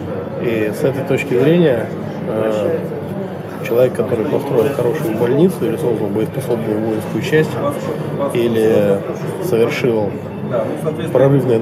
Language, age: Russian, 20-39